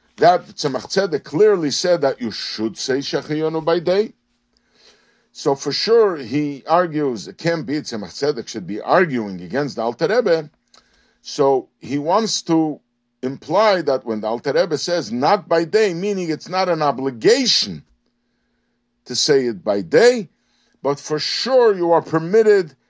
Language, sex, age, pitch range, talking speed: English, male, 50-69, 140-195 Hz, 145 wpm